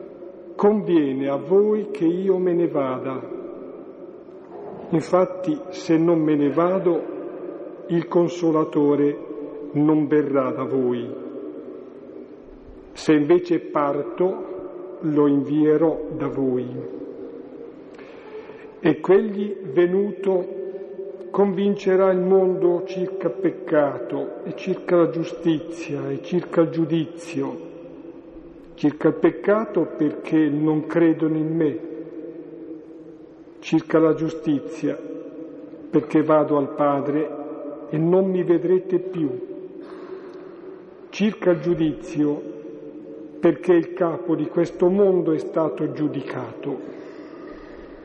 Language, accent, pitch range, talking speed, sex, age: Italian, native, 150-185 Hz, 95 wpm, male, 50-69